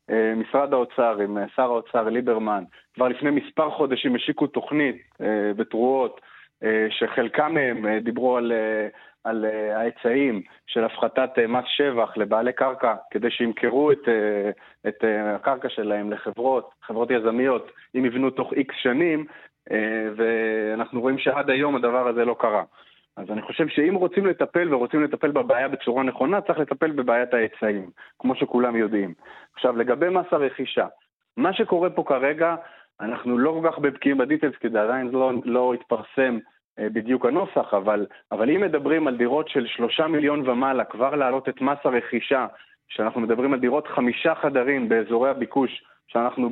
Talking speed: 140 wpm